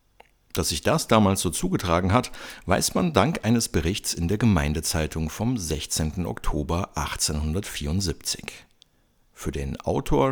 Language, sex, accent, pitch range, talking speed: German, male, German, 80-115 Hz, 130 wpm